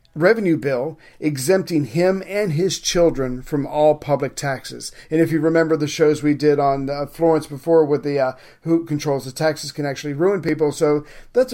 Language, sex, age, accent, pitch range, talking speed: English, male, 40-59, American, 145-165 Hz, 185 wpm